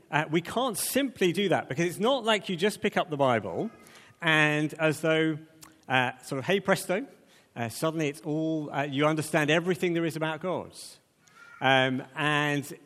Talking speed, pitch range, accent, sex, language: 175 wpm, 135-175 Hz, British, male, English